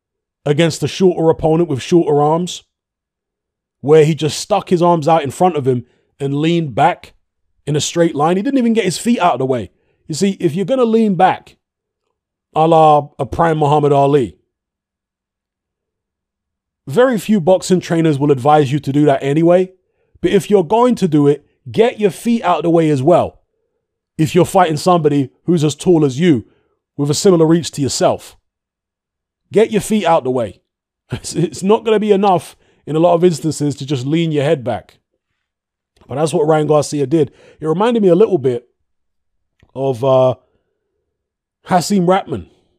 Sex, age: male, 30-49